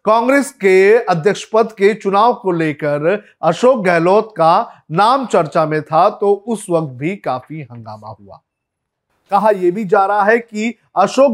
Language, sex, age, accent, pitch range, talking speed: Hindi, male, 30-49, native, 155-220 Hz, 160 wpm